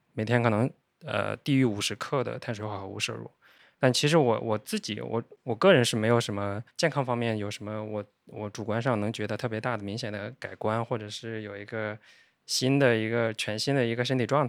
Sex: male